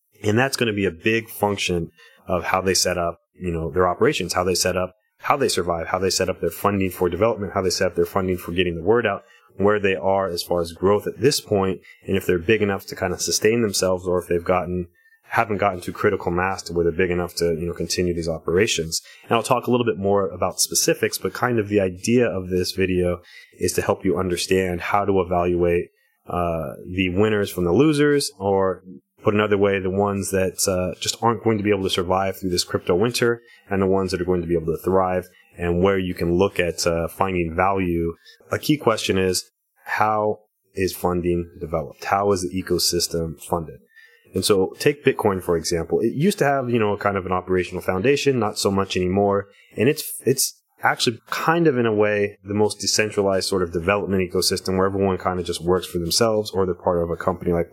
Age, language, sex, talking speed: 30-49, English, male, 230 wpm